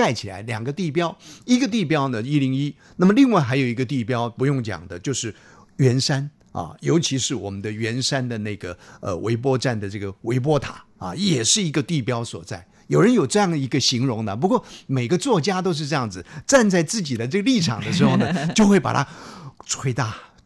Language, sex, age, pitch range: Chinese, male, 50-69, 125-180 Hz